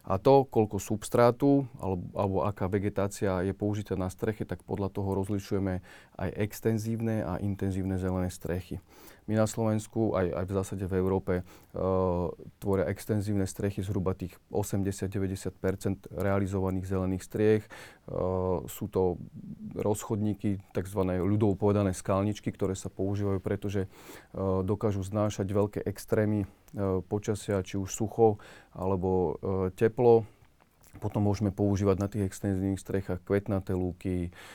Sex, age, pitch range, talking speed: male, 40-59, 95-105 Hz, 125 wpm